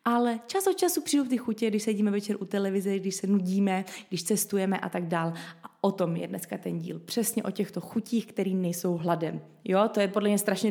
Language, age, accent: Czech, 20-39, native